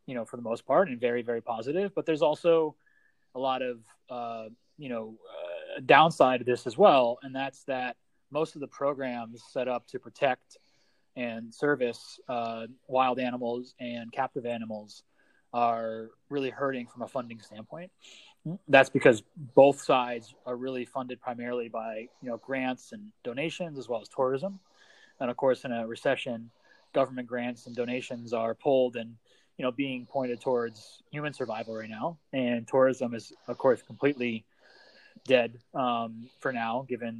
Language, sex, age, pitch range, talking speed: English, male, 20-39, 115-135 Hz, 165 wpm